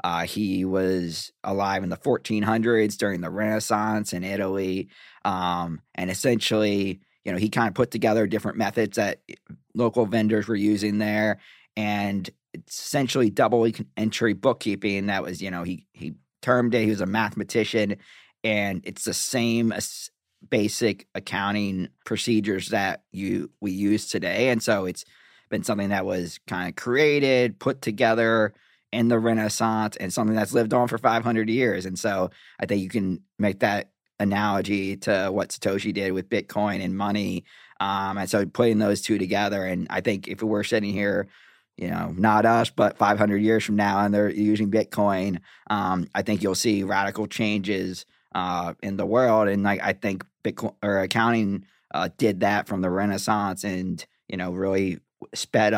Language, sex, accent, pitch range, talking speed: English, male, American, 95-110 Hz, 170 wpm